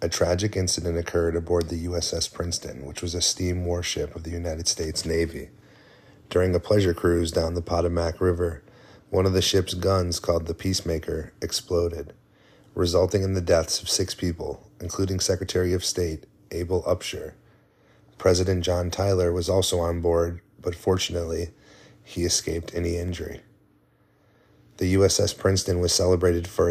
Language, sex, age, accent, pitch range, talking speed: English, male, 30-49, American, 85-95 Hz, 150 wpm